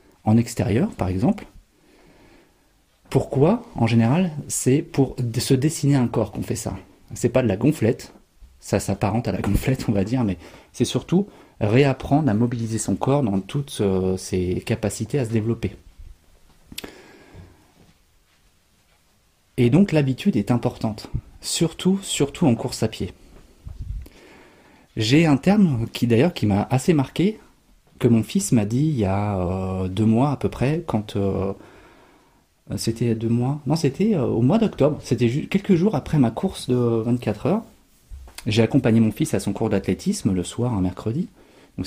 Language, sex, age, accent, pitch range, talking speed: French, male, 30-49, French, 100-135 Hz, 160 wpm